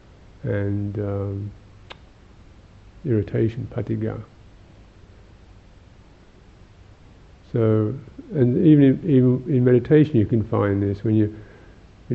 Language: English